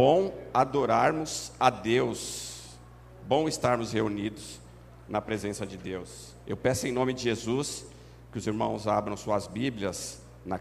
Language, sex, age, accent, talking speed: Portuguese, male, 50-69, Brazilian, 135 wpm